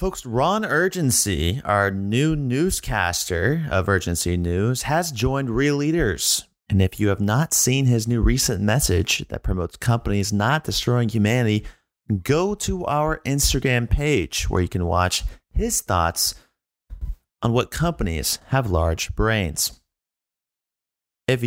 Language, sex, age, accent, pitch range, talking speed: English, male, 30-49, American, 90-140 Hz, 130 wpm